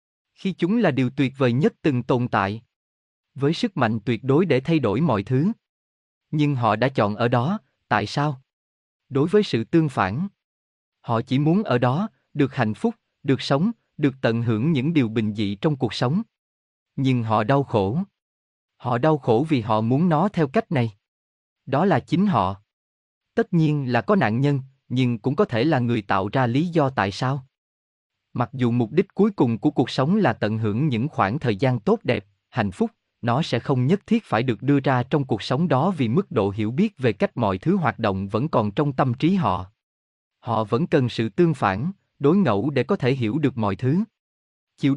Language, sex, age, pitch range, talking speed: Vietnamese, male, 20-39, 110-160 Hz, 205 wpm